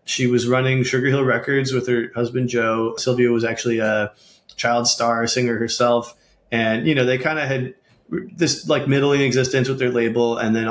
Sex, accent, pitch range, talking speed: male, American, 120-130 Hz, 190 wpm